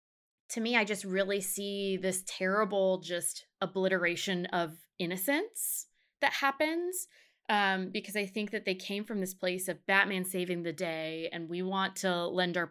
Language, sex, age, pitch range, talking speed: English, female, 20-39, 175-210 Hz, 165 wpm